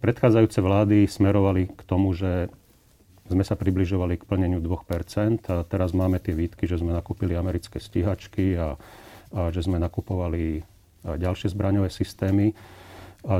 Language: Slovak